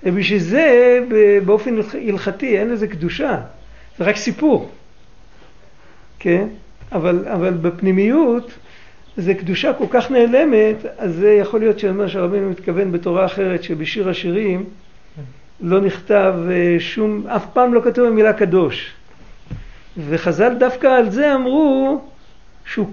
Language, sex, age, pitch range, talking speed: Hebrew, male, 60-79, 180-230 Hz, 120 wpm